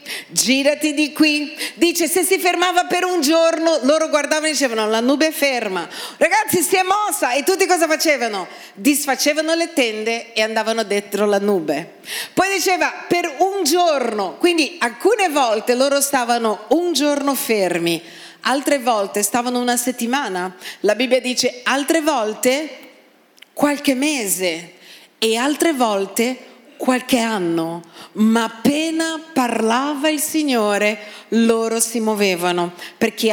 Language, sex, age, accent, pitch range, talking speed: Italian, female, 40-59, native, 220-300 Hz, 130 wpm